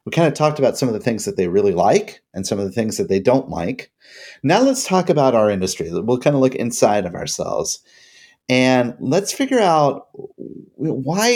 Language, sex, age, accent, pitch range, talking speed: English, male, 30-49, American, 120-165 Hz, 210 wpm